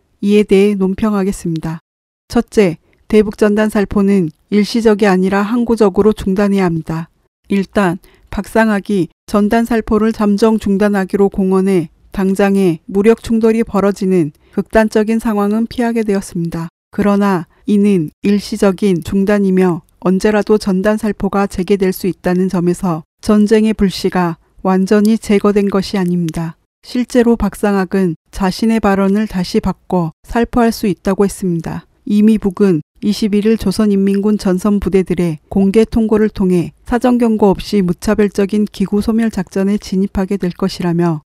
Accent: native